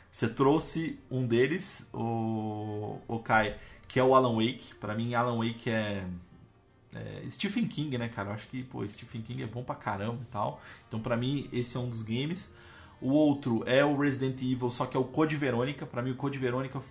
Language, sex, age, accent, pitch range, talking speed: Portuguese, male, 20-39, Brazilian, 110-130 Hz, 210 wpm